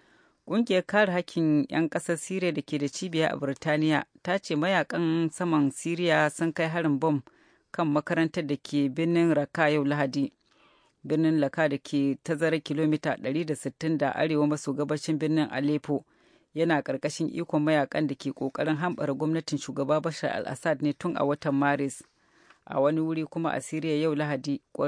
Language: English